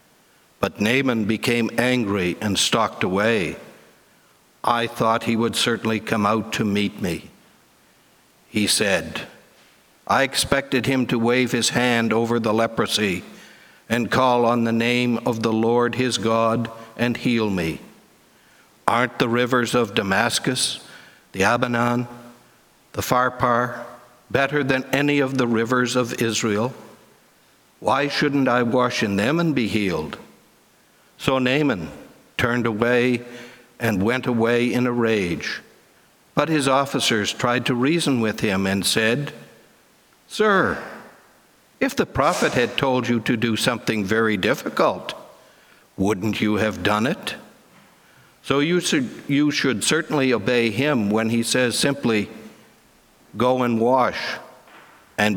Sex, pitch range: male, 115-125 Hz